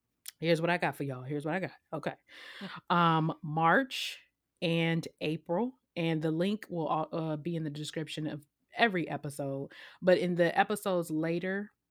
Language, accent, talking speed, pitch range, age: English, American, 165 wpm, 145-165 Hz, 20-39